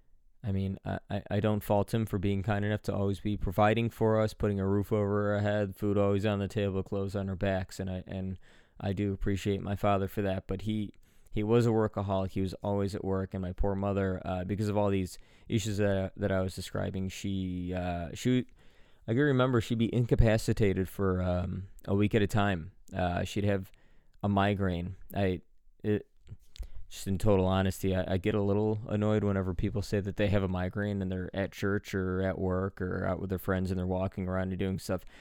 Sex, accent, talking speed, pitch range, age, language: male, American, 220 wpm, 95-105 Hz, 20-39, English